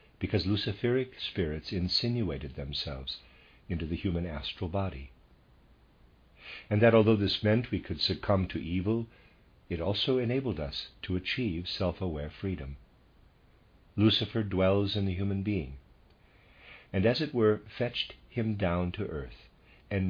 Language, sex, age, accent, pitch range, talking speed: English, male, 50-69, American, 80-110 Hz, 130 wpm